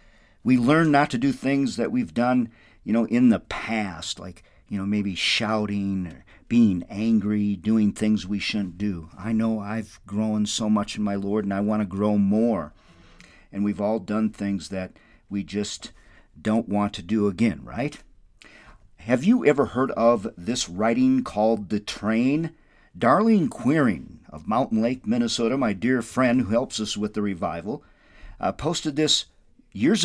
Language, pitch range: English, 105-150 Hz